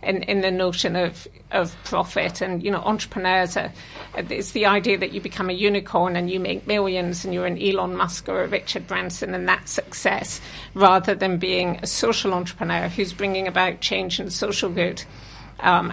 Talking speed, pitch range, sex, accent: 190 wpm, 185-215 Hz, female, British